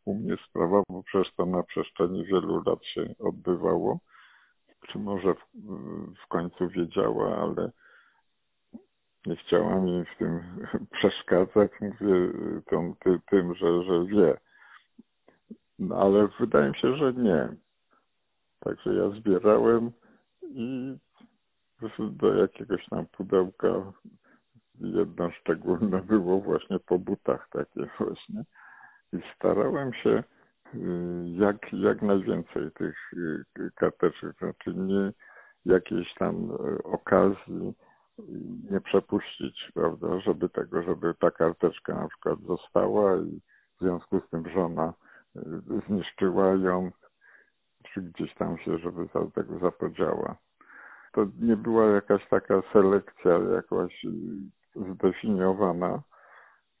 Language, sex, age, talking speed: Polish, male, 50-69, 105 wpm